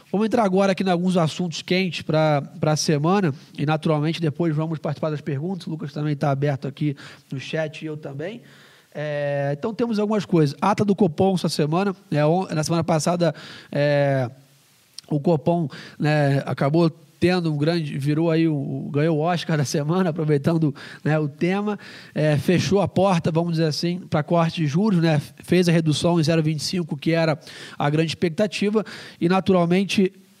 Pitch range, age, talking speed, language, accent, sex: 155-180 Hz, 20-39, 165 wpm, English, Brazilian, male